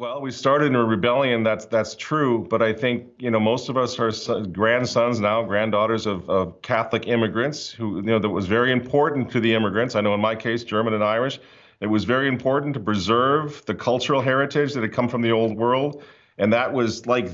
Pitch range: 110-135 Hz